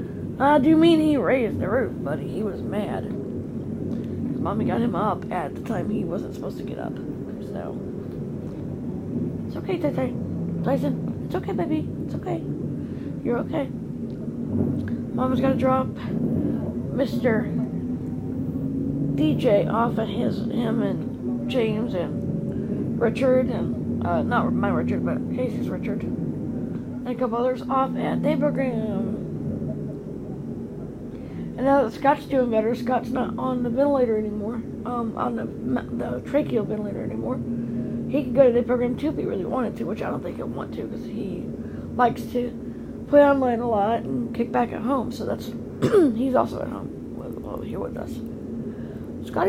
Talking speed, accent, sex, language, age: 160 wpm, American, female, English, 20-39